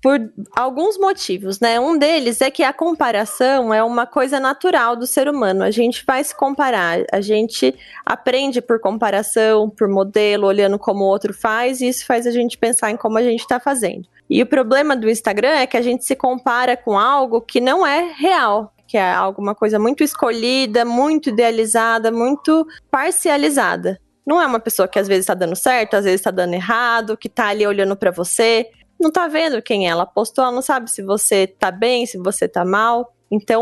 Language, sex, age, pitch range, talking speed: Portuguese, female, 20-39, 210-265 Hz, 200 wpm